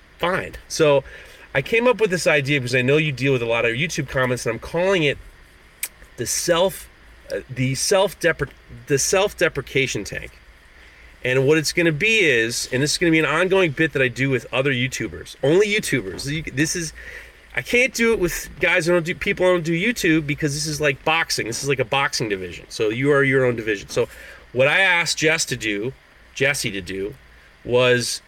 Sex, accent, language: male, American, English